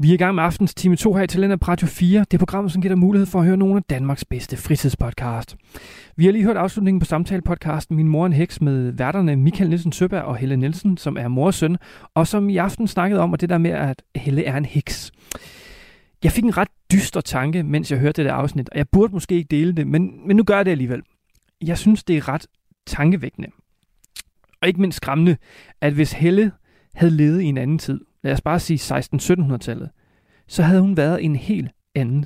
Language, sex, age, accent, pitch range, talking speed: Danish, male, 30-49, native, 145-190 Hz, 235 wpm